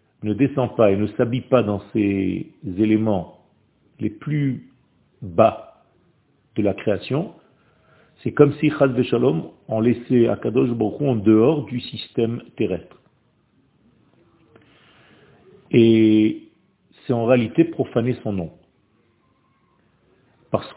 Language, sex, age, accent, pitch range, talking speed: French, male, 50-69, French, 115-150 Hz, 110 wpm